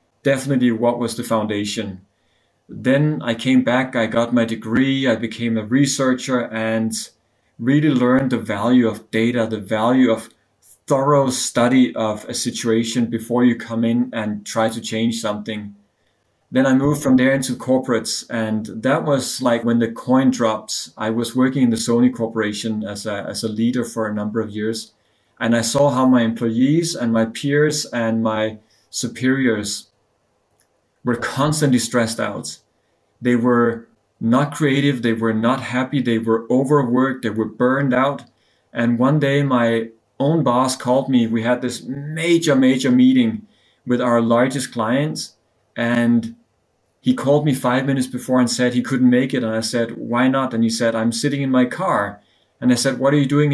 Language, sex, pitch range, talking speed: English, male, 115-130 Hz, 175 wpm